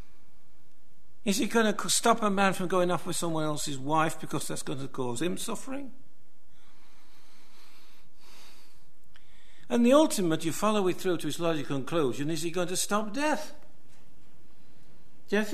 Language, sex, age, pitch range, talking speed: English, male, 60-79, 135-185 Hz, 150 wpm